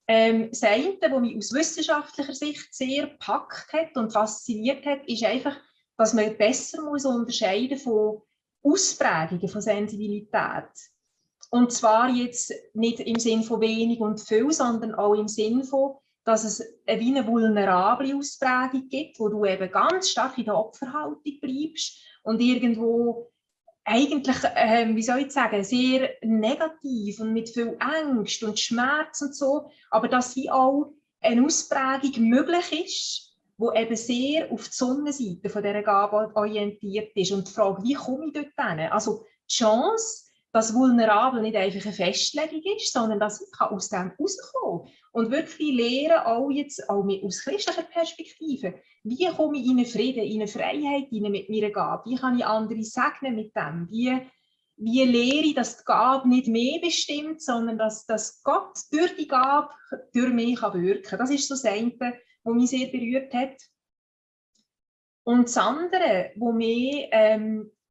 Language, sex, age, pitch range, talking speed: German, female, 30-49, 215-280 Hz, 165 wpm